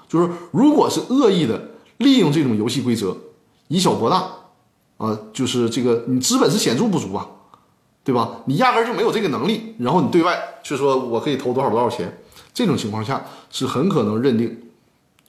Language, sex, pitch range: Chinese, male, 120-170 Hz